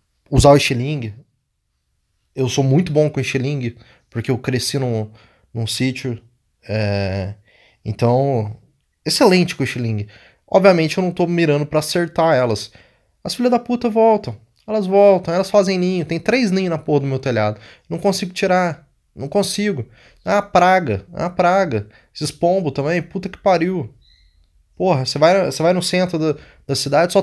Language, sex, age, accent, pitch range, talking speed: Portuguese, male, 20-39, Brazilian, 125-185 Hz, 155 wpm